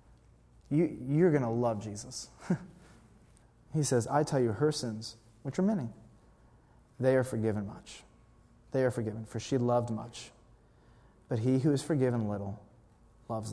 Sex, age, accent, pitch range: male, 30-49, American, 115-130 Hz